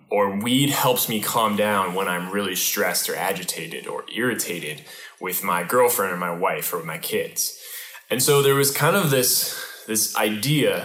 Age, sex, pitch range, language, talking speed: 10-29, male, 105-165 Hz, English, 175 wpm